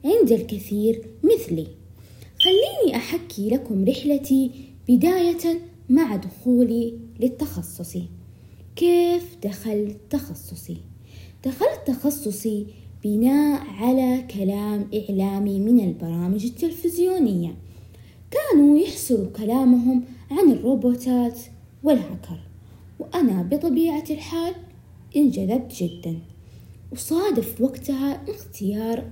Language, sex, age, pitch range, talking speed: Arabic, female, 20-39, 195-290 Hz, 75 wpm